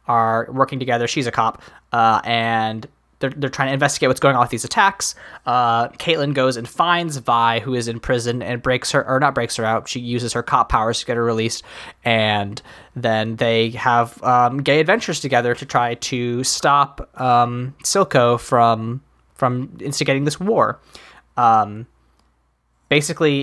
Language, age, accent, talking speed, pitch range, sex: English, 20-39, American, 170 wpm, 115-140 Hz, male